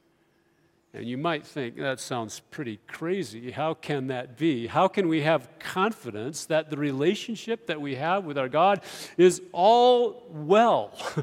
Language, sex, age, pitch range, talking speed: English, male, 40-59, 145-195 Hz, 155 wpm